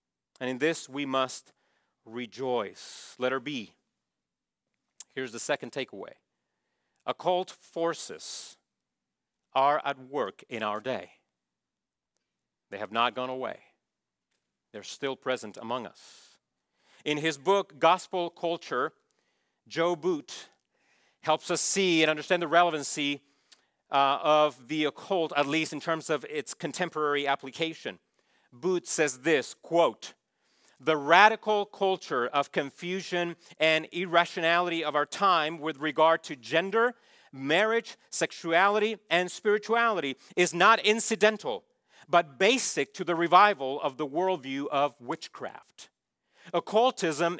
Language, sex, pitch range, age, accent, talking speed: English, male, 145-195 Hz, 40-59, American, 115 wpm